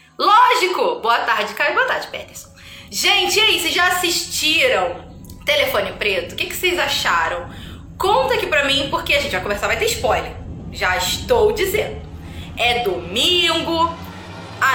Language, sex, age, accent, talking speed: Portuguese, female, 20-39, Brazilian, 150 wpm